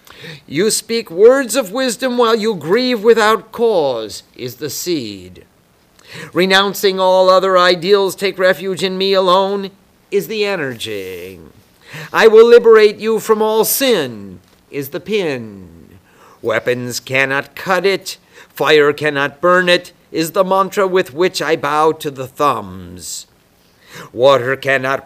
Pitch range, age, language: 145-205 Hz, 50-69, English